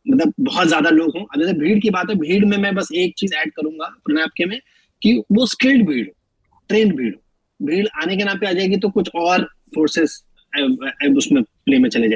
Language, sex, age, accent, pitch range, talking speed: Hindi, male, 30-49, native, 160-245 Hz, 185 wpm